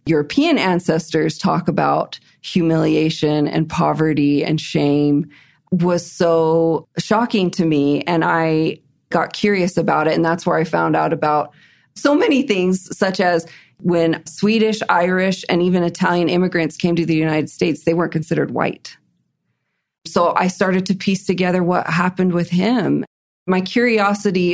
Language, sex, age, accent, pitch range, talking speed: English, female, 30-49, American, 160-180 Hz, 145 wpm